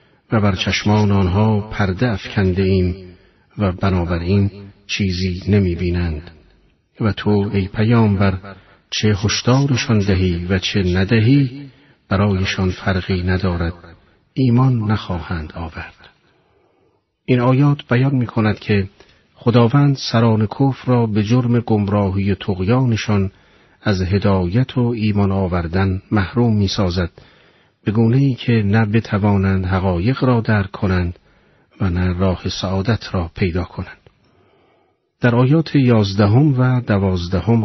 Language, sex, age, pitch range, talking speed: Persian, male, 40-59, 95-115 Hz, 115 wpm